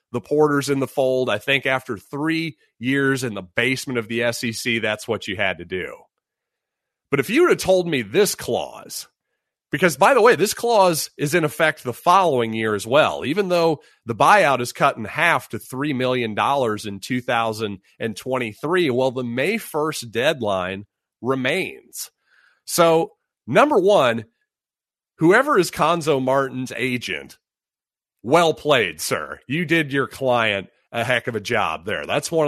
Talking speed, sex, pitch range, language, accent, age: 160 wpm, male, 115-150 Hz, English, American, 30-49